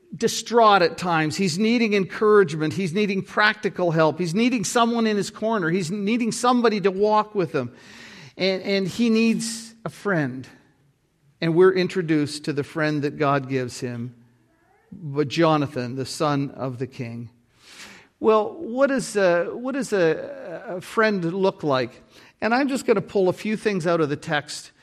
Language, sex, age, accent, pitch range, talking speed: English, male, 50-69, American, 150-210 Hz, 165 wpm